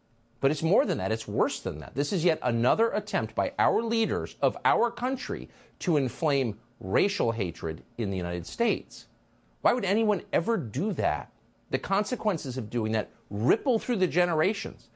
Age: 50-69